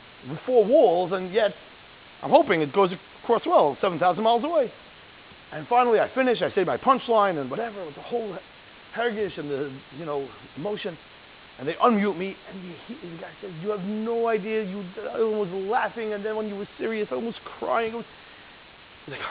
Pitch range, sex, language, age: 170-270 Hz, male, English, 30-49